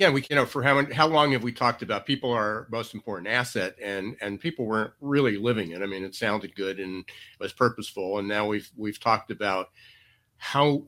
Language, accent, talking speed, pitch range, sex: English, American, 215 wpm, 105-120 Hz, male